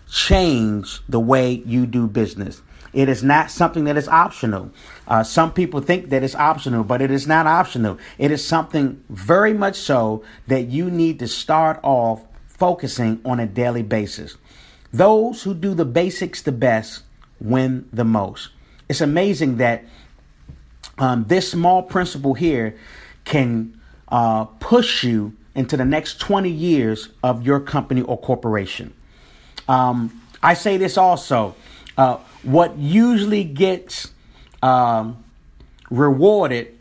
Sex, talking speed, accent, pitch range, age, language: male, 140 wpm, American, 120-175 Hz, 40-59, English